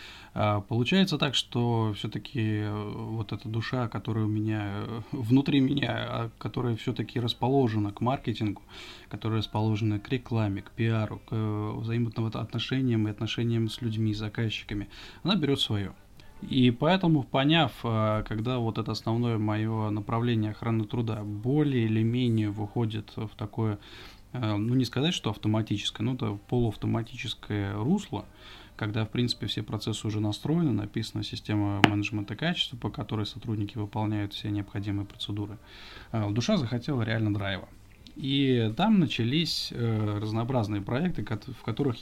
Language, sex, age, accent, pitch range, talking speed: Russian, male, 20-39, native, 105-120 Hz, 125 wpm